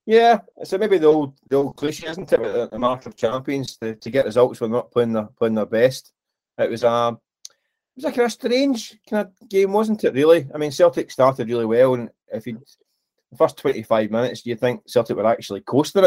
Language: English